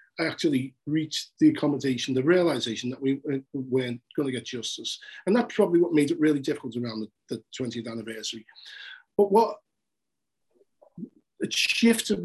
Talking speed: 145 wpm